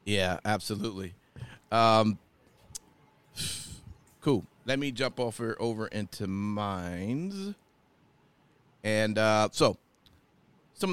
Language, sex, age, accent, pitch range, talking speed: English, male, 40-59, American, 110-145 Hz, 80 wpm